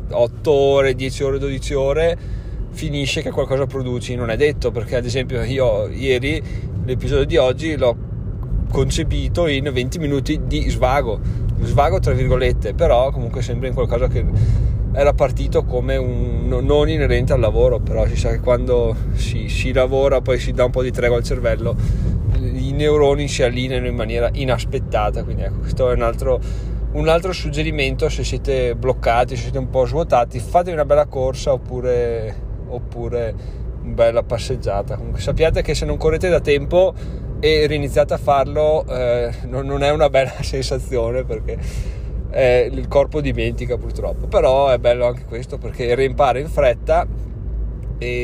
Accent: native